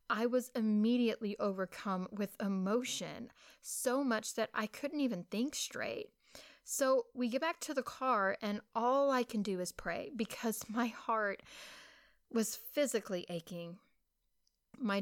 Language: English